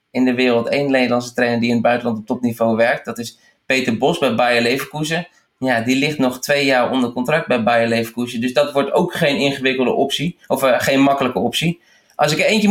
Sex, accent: male, Dutch